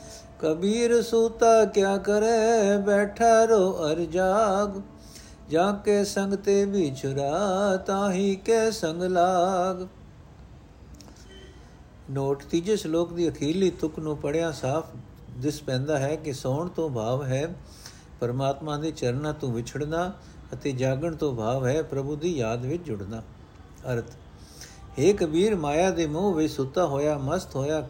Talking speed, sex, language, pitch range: 115 wpm, male, Punjabi, 130-170 Hz